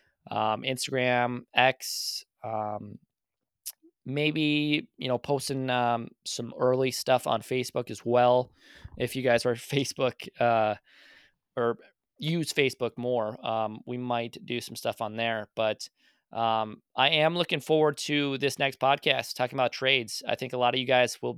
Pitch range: 115-135 Hz